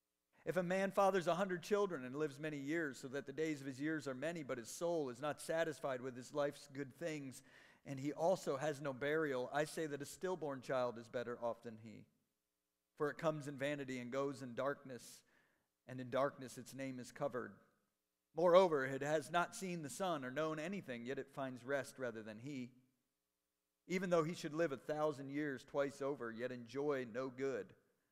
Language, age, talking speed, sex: English, 50-69, 205 wpm, male